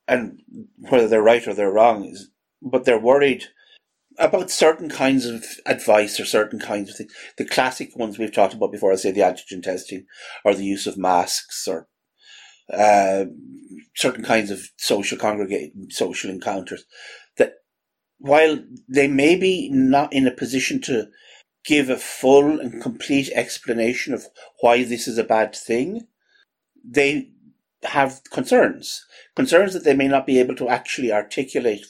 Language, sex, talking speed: English, male, 155 wpm